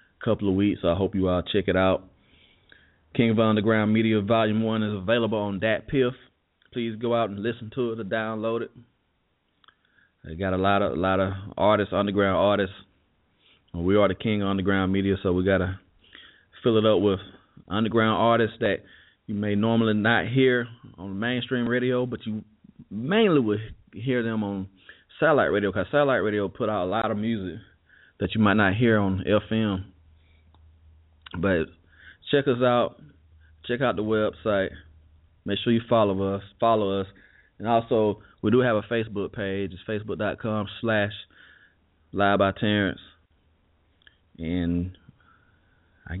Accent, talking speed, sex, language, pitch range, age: American, 155 wpm, male, English, 95-115 Hz, 20-39